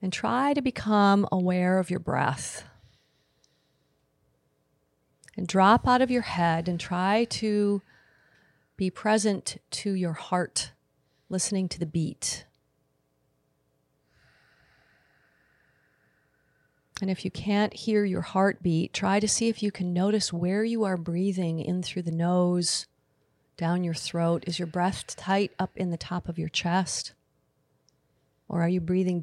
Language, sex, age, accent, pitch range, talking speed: English, female, 40-59, American, 155-195 Hz, 135 wpm